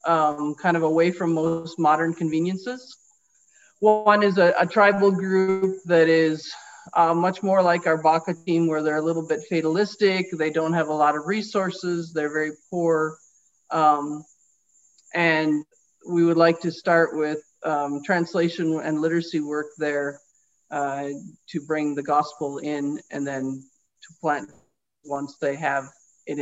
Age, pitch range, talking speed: 40-59, 150-175 Hz, 150 wpm